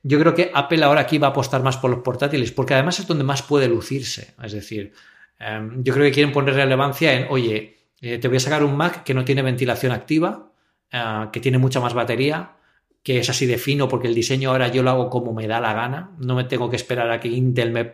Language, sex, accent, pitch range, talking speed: English, male, Spanish, 115-140 Hz, 250 wpm